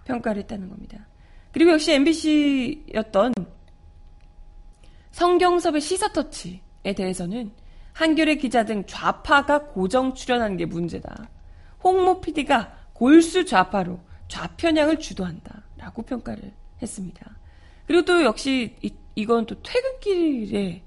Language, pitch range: Korean, 195-295 Hz